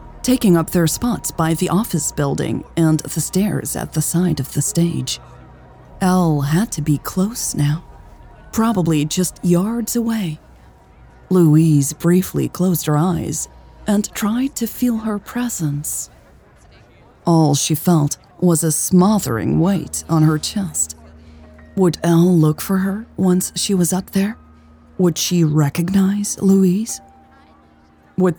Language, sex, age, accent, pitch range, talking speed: English, female, 30-49, American, 150-190 Hz, 135 wpm